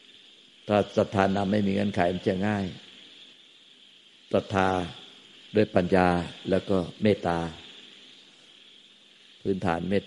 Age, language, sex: 50-69, Thai, male